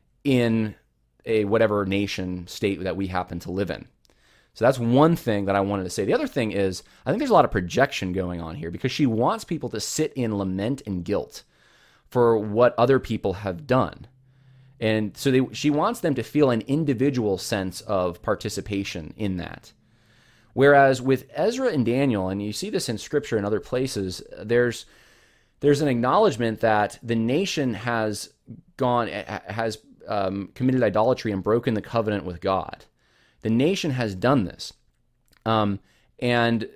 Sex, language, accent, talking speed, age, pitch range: male, English, American, 170 wpm, 20-39, 100-130 Hz